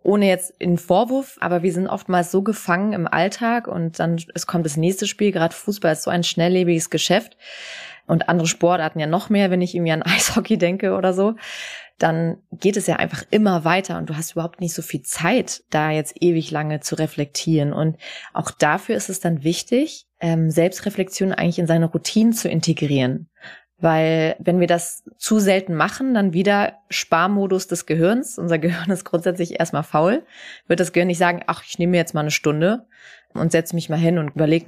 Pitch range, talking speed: 165-190 Hz, 195 wpm